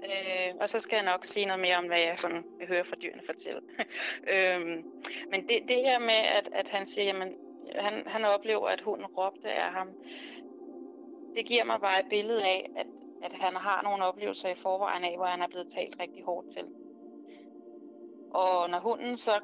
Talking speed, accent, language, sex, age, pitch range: 200 wpm, native, Danish, female, 20-39, 185-290 Hz